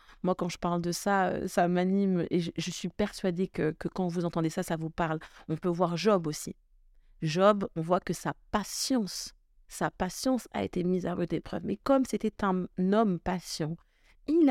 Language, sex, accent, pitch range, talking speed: French, female, French, 170-205 Hz, 195 wpm